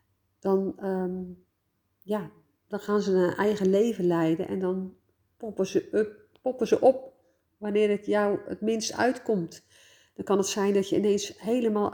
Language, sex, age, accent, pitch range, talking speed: Dutch, female, 50-69, Dutch, 160-200 Hz, 160 wpm